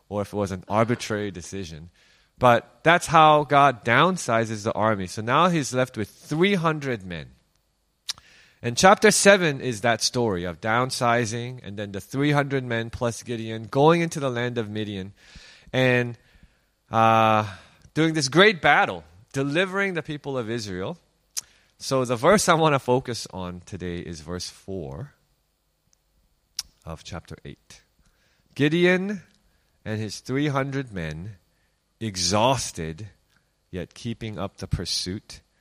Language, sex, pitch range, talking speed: English, male, 95-145 Hz, 135 wpm